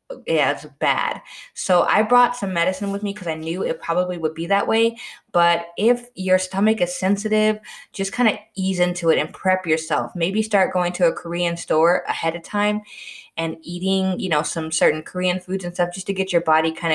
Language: Korean